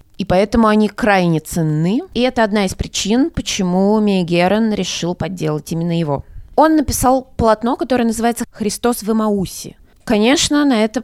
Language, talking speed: Russian, 145 wpm